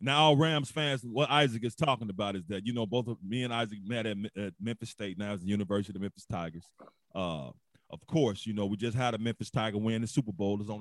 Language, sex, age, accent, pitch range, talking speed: English, male, 30-49, American, 110-155 Hz, 260 wpm